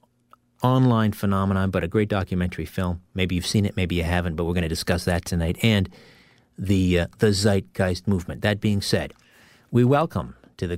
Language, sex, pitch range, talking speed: English, male, 90-120 Hz, 190 wpm